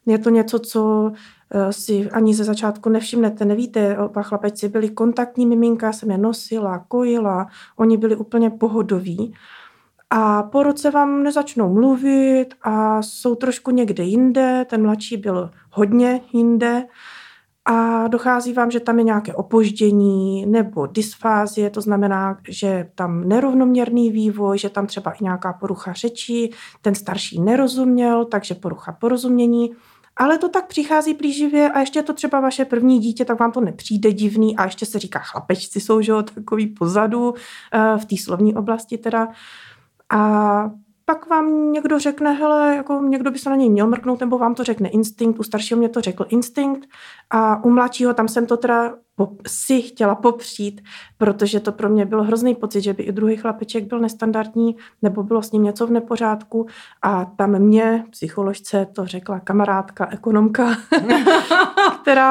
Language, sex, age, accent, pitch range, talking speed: Czech, female, 30-49, native, 205-240 Hz, 155 wpm